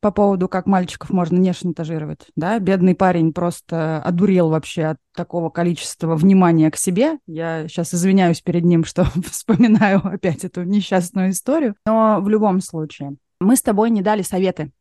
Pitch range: 160-200 Hz